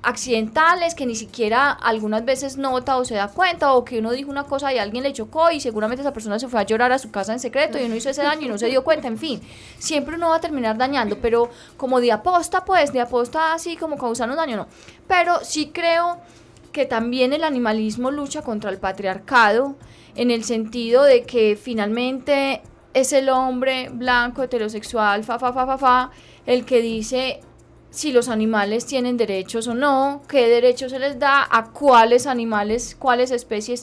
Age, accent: 10-29, Colombian